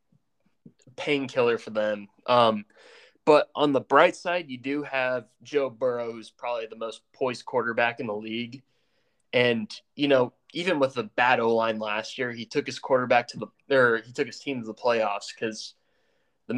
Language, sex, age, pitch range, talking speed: English, male, 20-39, 115-145 Hz, 175 wpm